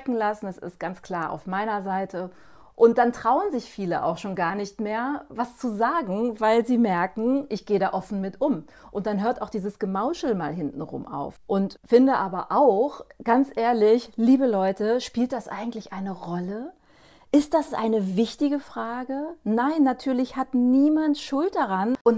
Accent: German